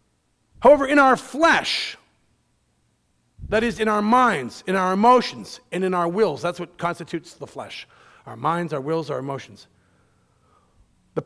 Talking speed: 150 wpm